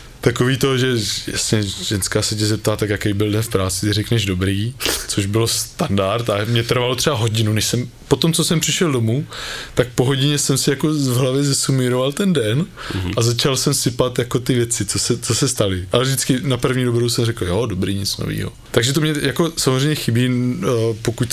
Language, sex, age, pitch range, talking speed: Czech, male, 20-39, 110-125 Hz, 205 wpm